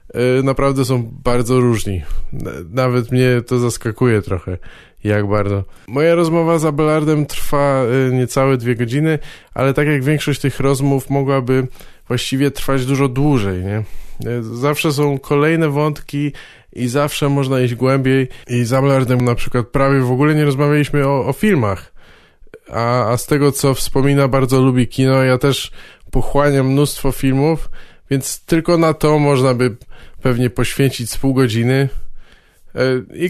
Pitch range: 120-145 Hz